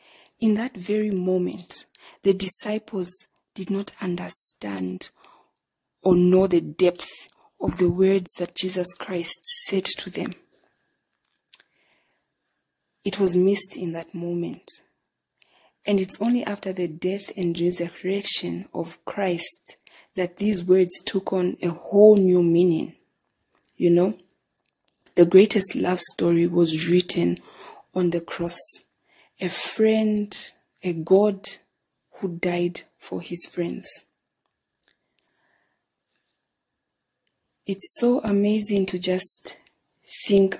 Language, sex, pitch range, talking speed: English, female, 175-195 Hz, 110 wpm